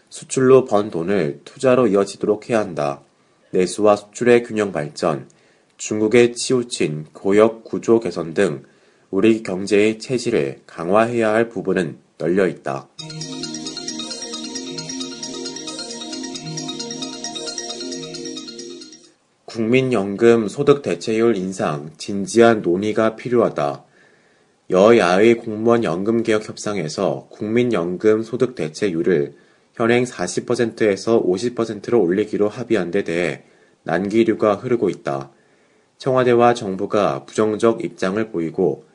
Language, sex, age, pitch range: Korean, male, 30-49, 95-120 Hz